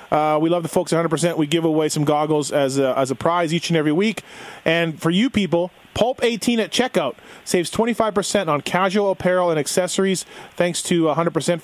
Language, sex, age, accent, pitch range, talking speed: English, male, 30-49, American, 155-195 Hz, 195 wpm